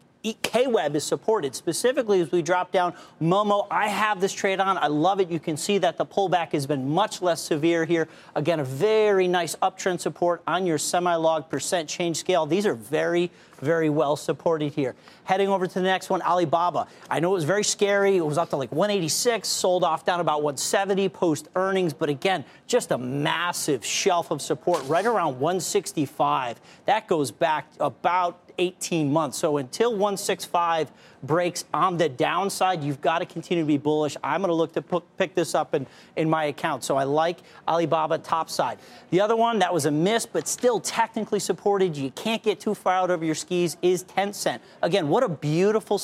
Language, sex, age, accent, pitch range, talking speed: English, male, 40-59, American, 160-195 Hz, 195 wpm